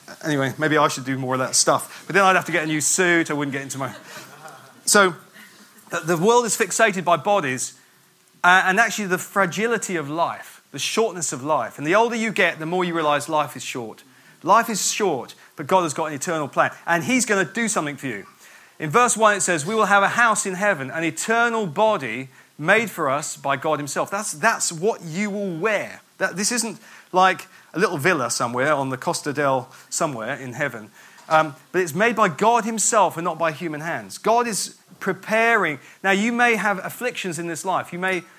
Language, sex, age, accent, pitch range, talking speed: English, male, 30-49, British, 155-215 Hz, 215 wpm